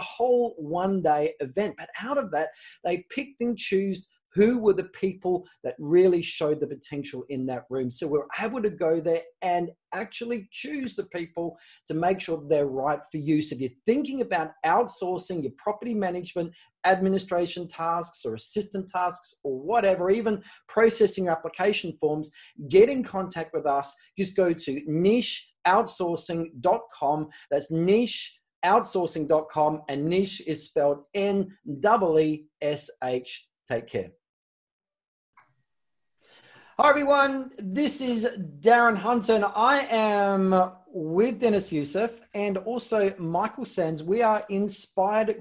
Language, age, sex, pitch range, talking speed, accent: English, 40-59, male, 165-225 Hz, 130 wpm, Australian